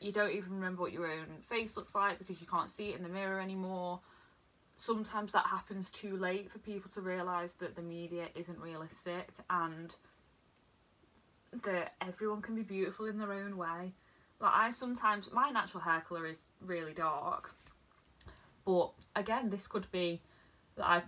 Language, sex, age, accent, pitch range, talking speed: English, female, 20-39, British, 170-200 Hz, 170 wpm